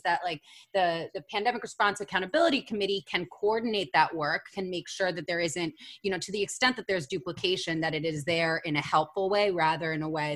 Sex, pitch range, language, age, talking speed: female, 160-210 Hz, English, 20-39, 220 wpm